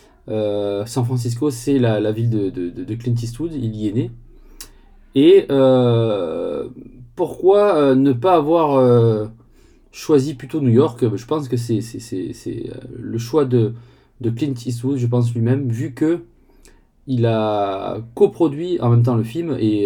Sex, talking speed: male, 165 wpm